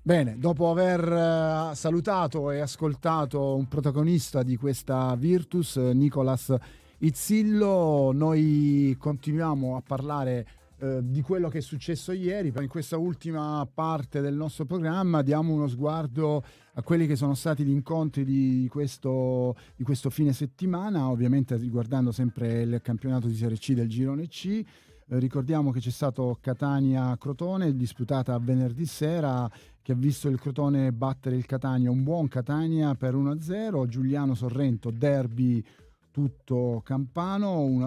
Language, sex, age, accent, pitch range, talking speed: Italian, male, 40-59, native, 125-155 Hz, 140 wpm